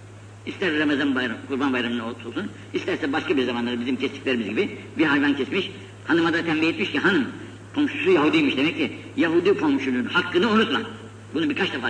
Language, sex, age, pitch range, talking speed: Turkish, female, 60-79, 105-175 Hz, 165 wpm